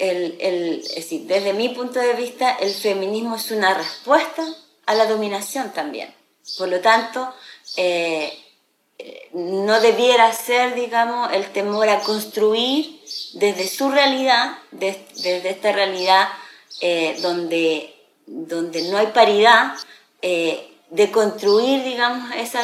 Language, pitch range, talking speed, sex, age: Portuguese, 185-235 Hz, 110 wpm, female, 20-39